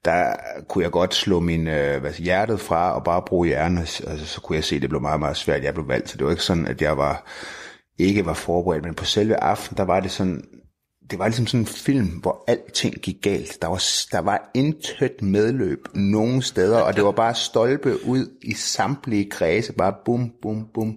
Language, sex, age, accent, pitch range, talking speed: Danish, male, 30-49, native, 85-110 Hz, 225 wpm